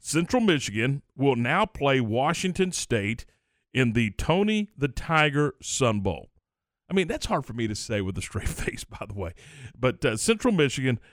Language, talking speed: English, 180 wpm